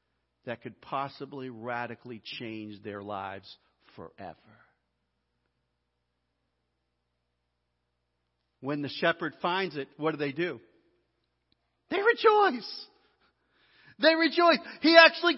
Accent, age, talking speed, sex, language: American, 50-69, 90 wpm, male, English